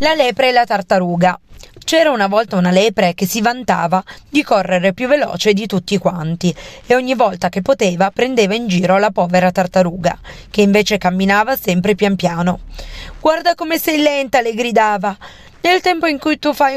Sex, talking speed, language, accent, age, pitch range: female, 175 wpm, Italian, native, 30-49, 185-240 Hz